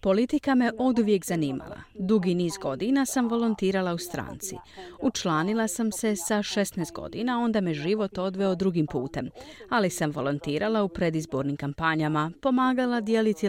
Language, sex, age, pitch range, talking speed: Croatian, female, 40-59, 165-230 Hz, 140 wpm